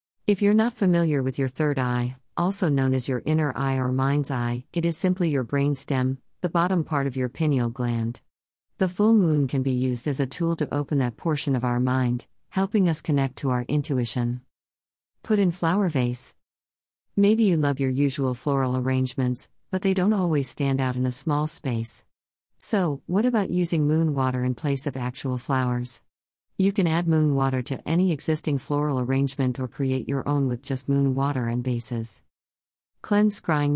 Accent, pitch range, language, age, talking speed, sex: American, 125-160 Hz, English, 40-59, 190 wpm, female